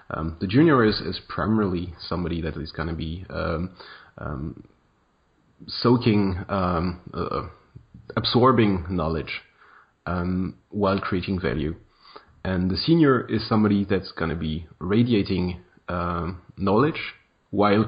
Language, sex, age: English, male, 30-49